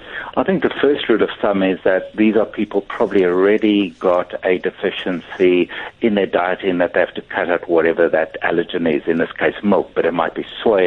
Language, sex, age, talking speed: English, male, 60-79, 220 wpm